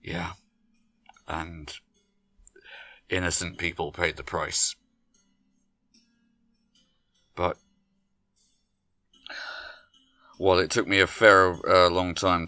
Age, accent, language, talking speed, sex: 30-49, British, English, 80 wpm, male